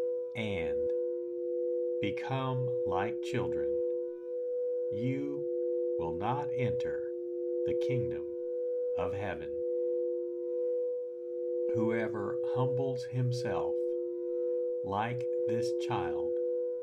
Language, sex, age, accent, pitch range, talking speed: English, male, 50-69, American, 125-165 Hz, 65 wpm